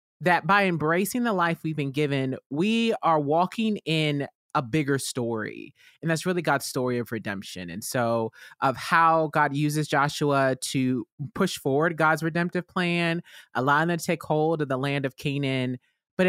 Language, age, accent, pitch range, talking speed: English, 20-39, American, 135-170 Hz, 170 wpm